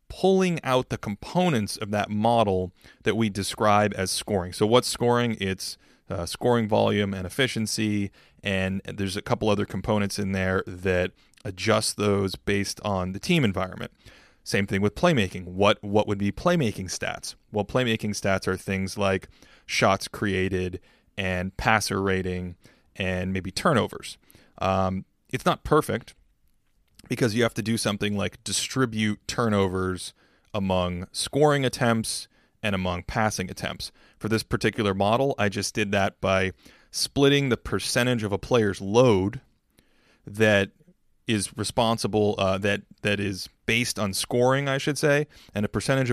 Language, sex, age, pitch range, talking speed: English, male, 30-49, 95-115 Hz, 145 wpm